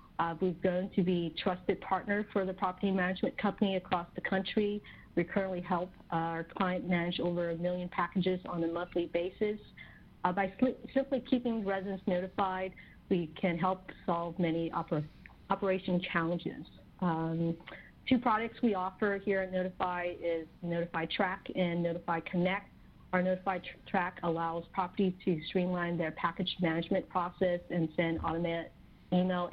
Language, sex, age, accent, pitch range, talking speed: English, female, 40-59, American, 170-190 Hz, 145 wpm